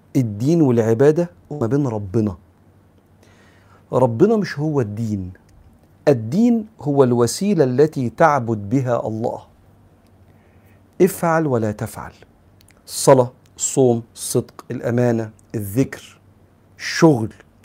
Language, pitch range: Arabic, 105-150 Hz